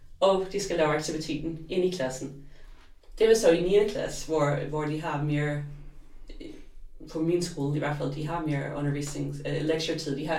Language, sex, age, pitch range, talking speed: Danish, female, 30-49, 145-175 Hz, 175 wpm